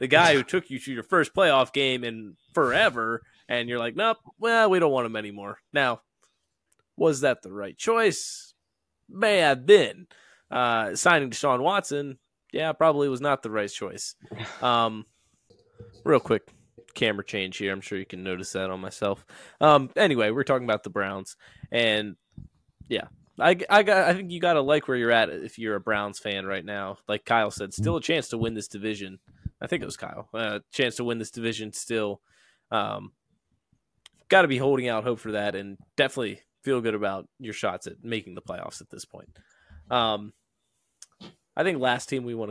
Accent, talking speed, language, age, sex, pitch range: American, 195 wpm, English, 20-39, male, 105-145 Hz